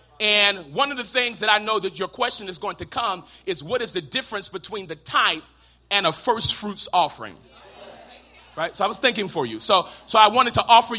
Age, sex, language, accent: 30-49, male, English, American